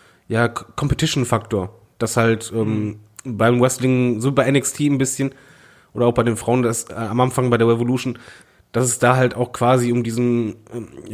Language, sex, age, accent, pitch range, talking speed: German, male, 20-39, German, 115-135 Hz, 180 wpm